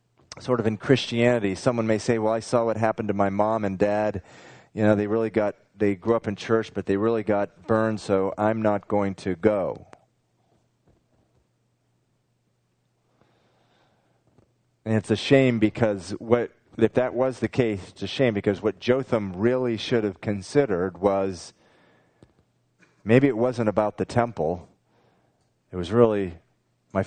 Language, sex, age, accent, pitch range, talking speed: English, male, 40-59, American, 100-120 Hz, 155 wpm